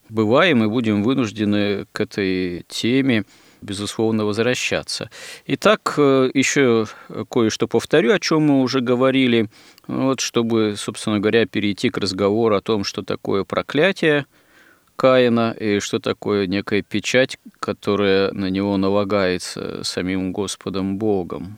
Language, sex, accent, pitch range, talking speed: Russian, male, native, 105-130 Hz, 115 wpm